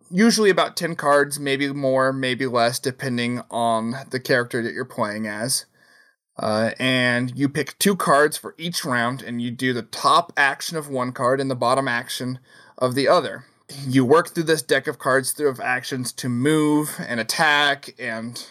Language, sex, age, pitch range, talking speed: English, male, 20-39, 125-150 Hz, 180 wpm